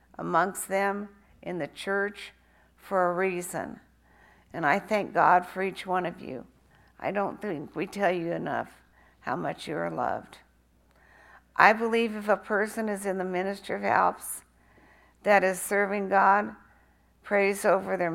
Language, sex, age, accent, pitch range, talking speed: English, female, 60-79, American, 150-210 Hz, 155 wpm